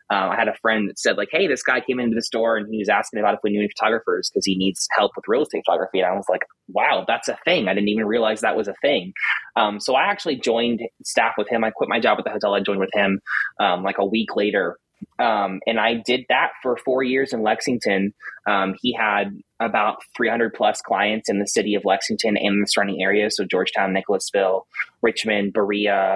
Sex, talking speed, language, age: male, 240 wpm, English, 20-39